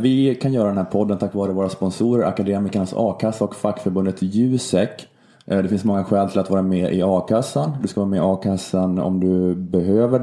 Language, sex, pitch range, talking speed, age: Swedish, male, 95-110 Hz, 200 wpm, 20-39